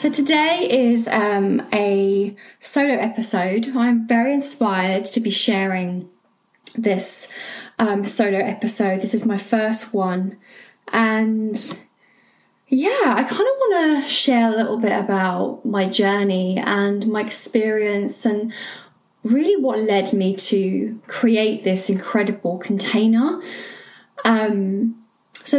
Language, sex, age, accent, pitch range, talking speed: English, female, 10-29, British, 195-240 Hz, 120 wpm